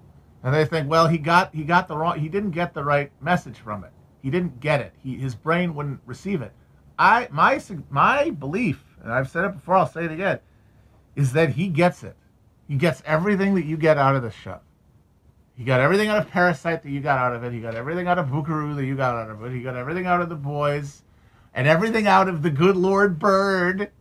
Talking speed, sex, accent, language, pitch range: 235 wpm, male, American, English, 130-185 Hz